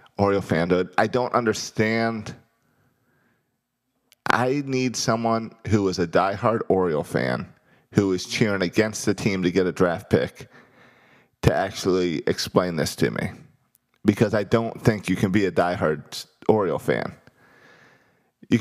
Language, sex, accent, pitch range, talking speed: English, male, American, 90-120 Hz, 135 wpm